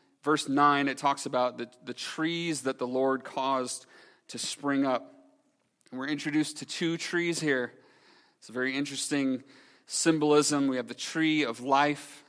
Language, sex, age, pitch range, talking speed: English, male, 30-49, 125-150 Hz, 160 wpm